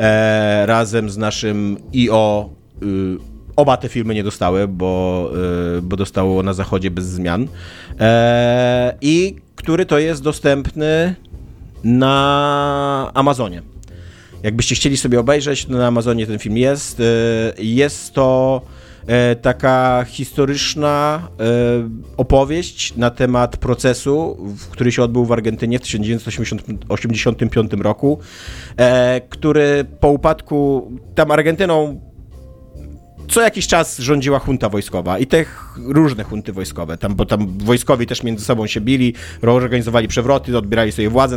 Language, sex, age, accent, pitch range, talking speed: Polish, male, 30-49, native, 110-145 Hz, 115 wpm